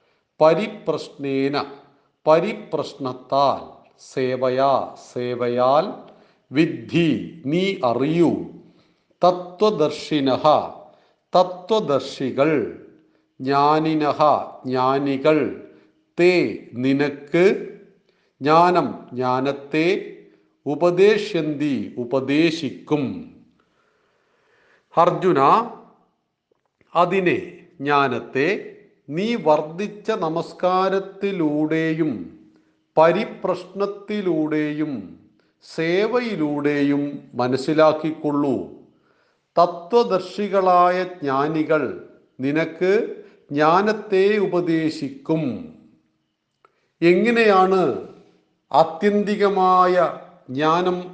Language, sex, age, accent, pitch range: Malayalam, male, 50-69, native, 140-185 Hz